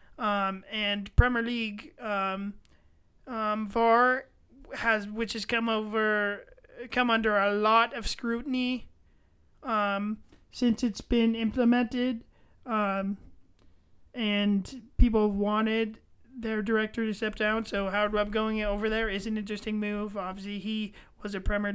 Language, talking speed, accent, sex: English, 130 wpm, American, male